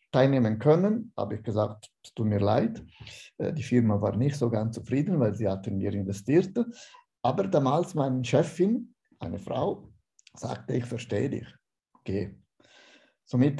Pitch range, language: 110-145 Hz, German